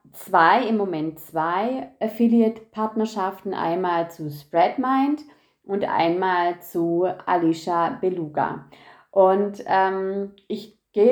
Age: 30-49